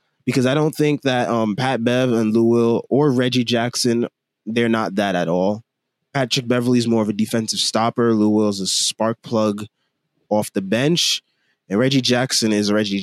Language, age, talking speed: English, 20-39, 190 wpm